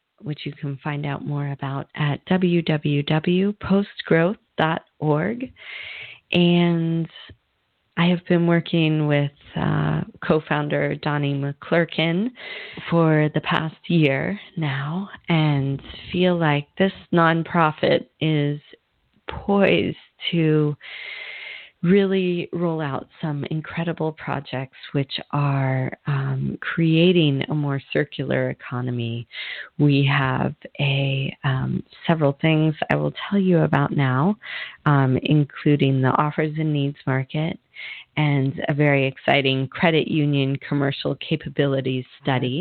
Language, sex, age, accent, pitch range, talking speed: English, female, 40-59, American, 135-165 Hz, 105 wpm